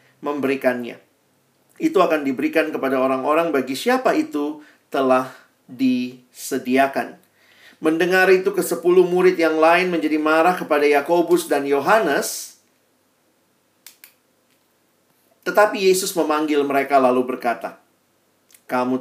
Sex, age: male, 40-59